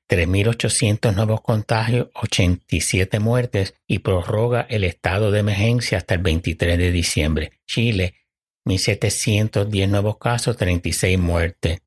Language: Spanish